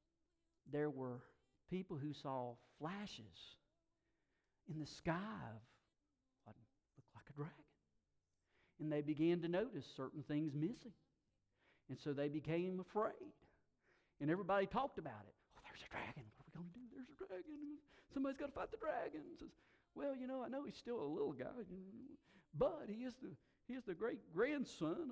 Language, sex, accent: English, male, American